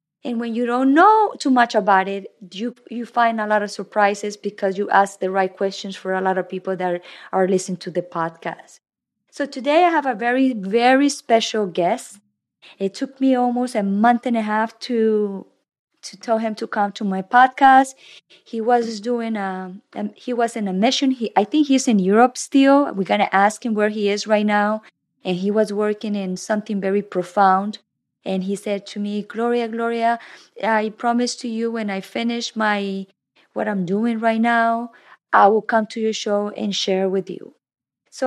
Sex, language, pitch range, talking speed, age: female, Spanish, 200-265 Hz, 195 wpm, 20-39